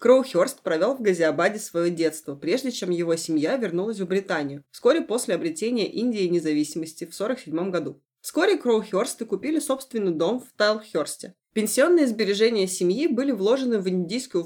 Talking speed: 145 wpm